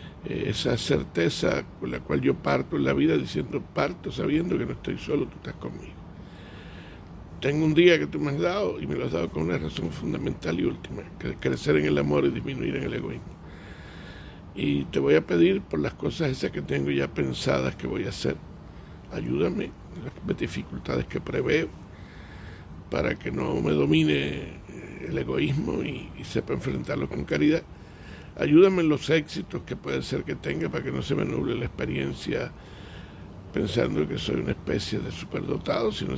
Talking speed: 180 wpm